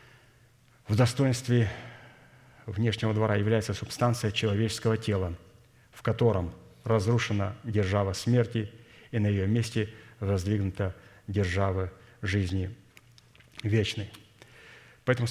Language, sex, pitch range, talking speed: Russian, male, 100-120 Hz, 85 wpm